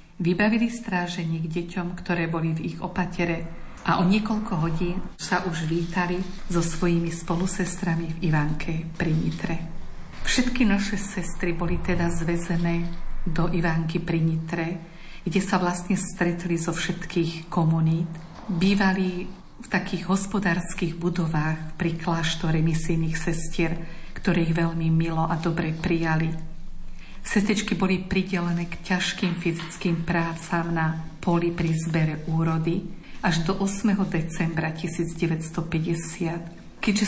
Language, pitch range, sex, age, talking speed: Slovak, 165-185 Hz, female, 50-69, 120 wpm